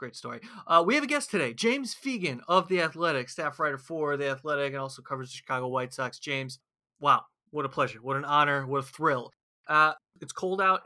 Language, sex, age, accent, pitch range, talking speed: English, male, 30-49, American, 135-175 Hz, 220 wpm